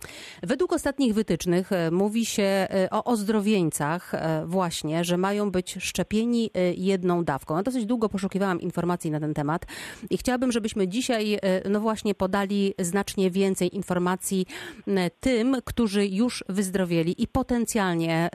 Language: Polish